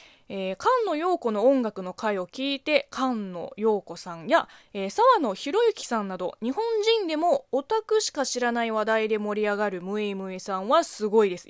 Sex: female